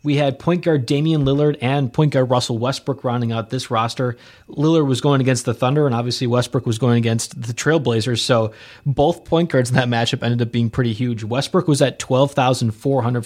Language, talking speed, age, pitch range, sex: English, 205 wpm, 20-39, 115-145 Hz, male